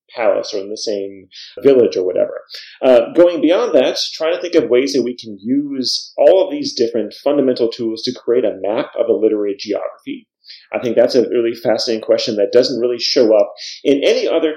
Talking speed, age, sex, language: 205 wpm, 30-49, male, English